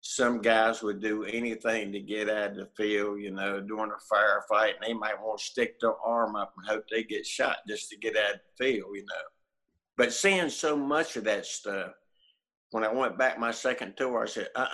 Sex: male